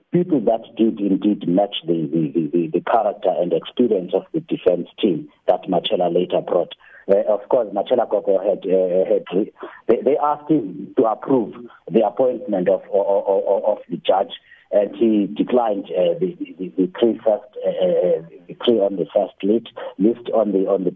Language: English